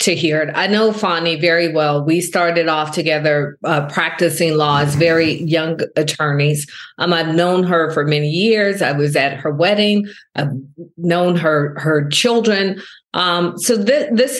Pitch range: 155-200 Hz